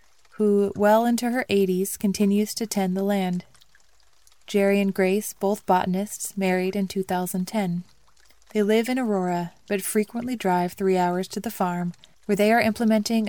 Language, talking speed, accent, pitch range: English, 155 wpm, American, 185-210 Hz